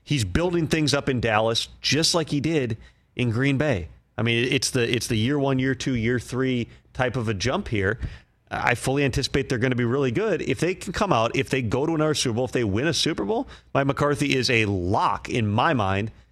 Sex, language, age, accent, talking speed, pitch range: male, English, 30-49, American, 240 wpm, 115-150 Hz